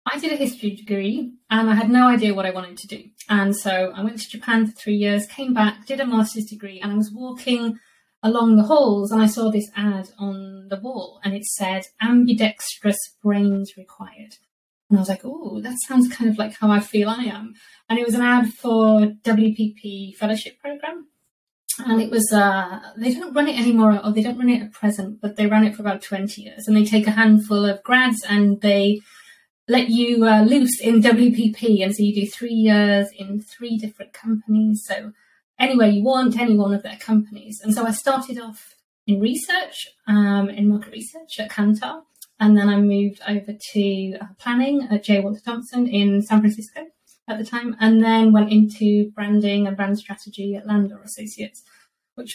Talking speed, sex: 200 wpm, female